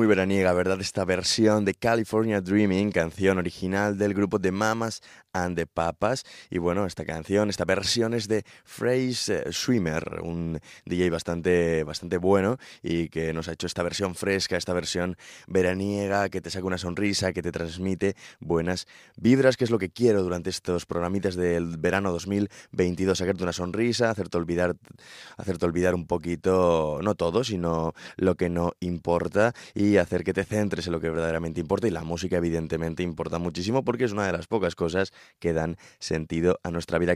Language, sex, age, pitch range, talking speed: Spanish, male, 20-39, 85-100 Hz, 180 wpm